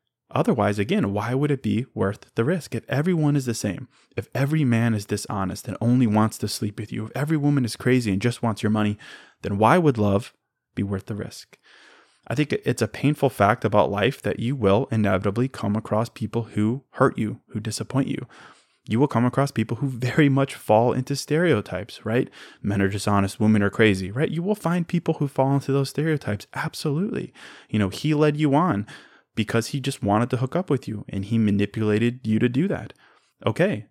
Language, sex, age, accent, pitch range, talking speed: English, male, 20-39, American, 100-135 Hz, 205 wpm